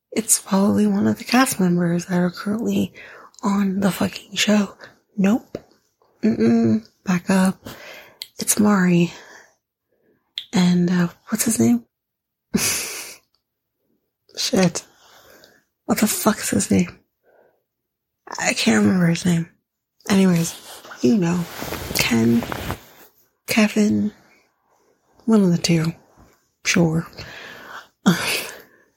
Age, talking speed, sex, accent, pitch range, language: 30-49, 100 wpm, female, American, 170-210 Hz, English